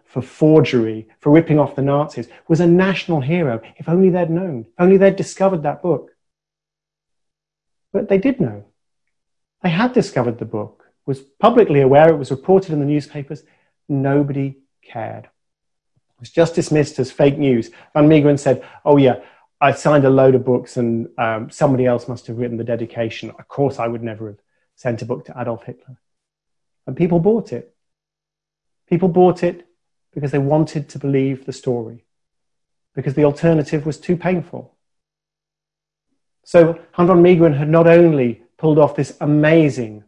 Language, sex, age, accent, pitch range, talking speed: English, male, 30-49, British, 125-155 Hz, 165 wpm